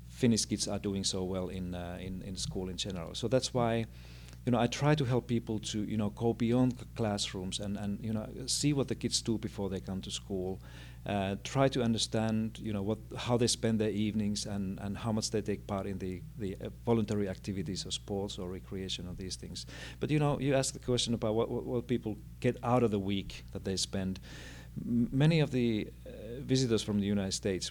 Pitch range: 95-120 Hz